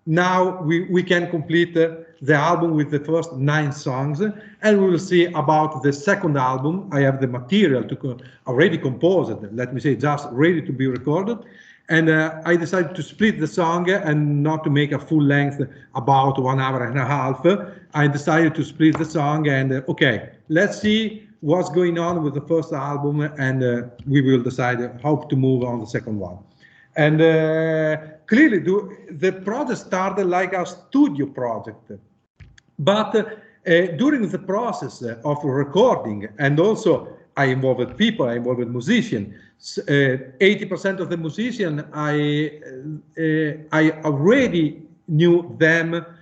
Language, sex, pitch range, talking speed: English, male, 135-175 Hz, 160 wpm